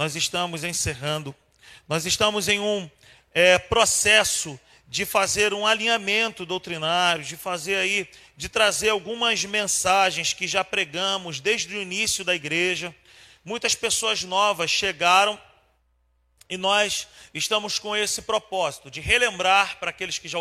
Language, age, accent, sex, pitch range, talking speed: Portuguese, 40-59, Brazilian, male, 170-210 Hz, 130 wpm